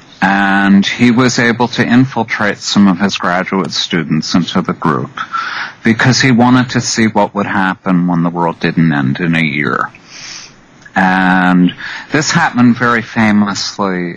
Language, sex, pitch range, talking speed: English, male, 95-120 Hz, 150 wpm